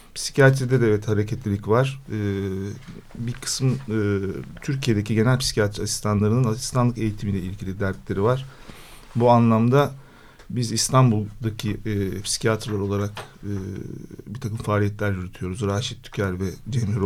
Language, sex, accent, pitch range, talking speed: Turkish, male, native, 100-130 Hz, 120 wpm